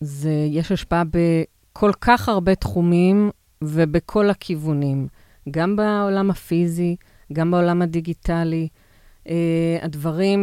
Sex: female